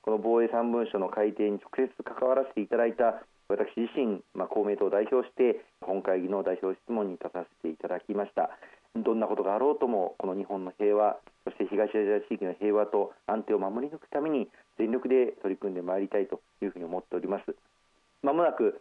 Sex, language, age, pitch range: male, Japanese, 40-59, 105-130 Hz